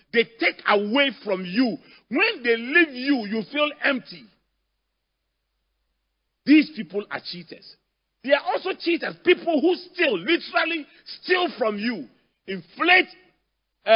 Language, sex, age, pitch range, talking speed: English, male, 40-59, 180-290 Hz, 120 wpm